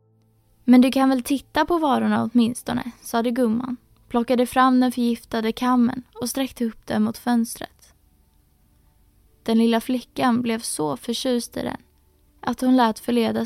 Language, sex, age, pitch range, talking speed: Swedish, female, 20-39, 220-250 Hz, 145 wpm